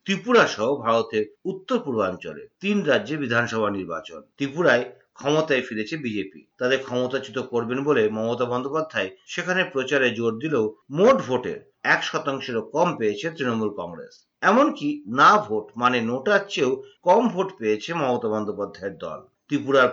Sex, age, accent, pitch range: male, 50-69, native, 125-195 Hz